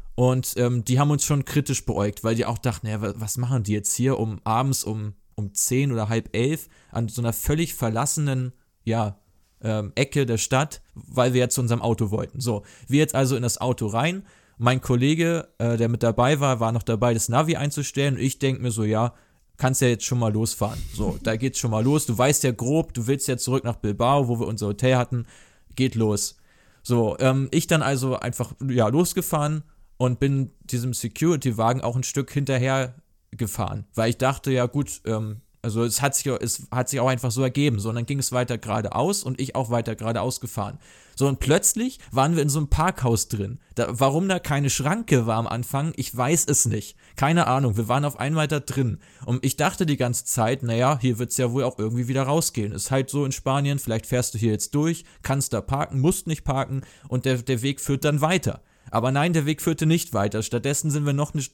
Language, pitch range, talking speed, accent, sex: German, 115-140 Hz, 220 wpm, German, male